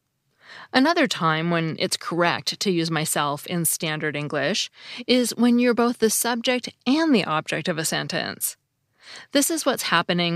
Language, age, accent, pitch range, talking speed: English, 30-49, American, 160-225 Hz, 155 wpm